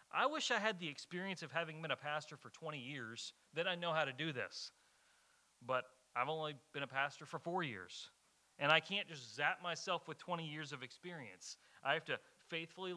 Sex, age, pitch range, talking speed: male, 30-49, 130-165 Hz, 210 wpm